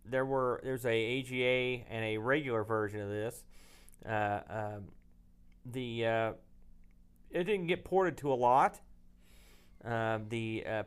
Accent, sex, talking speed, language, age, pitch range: American, male, 140 wpm, English, 40-59, 105-135 Hz